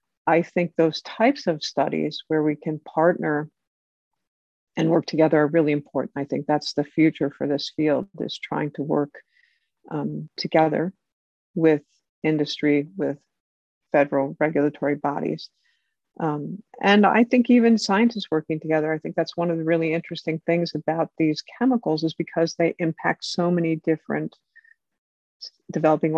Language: English